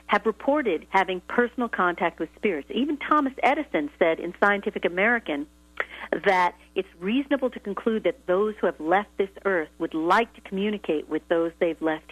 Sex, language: female, English